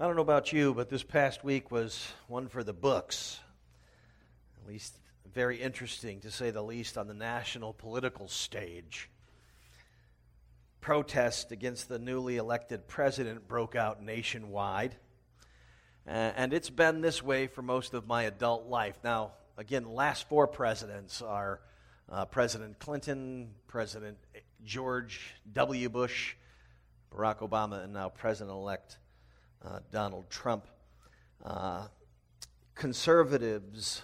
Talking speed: 125 wpm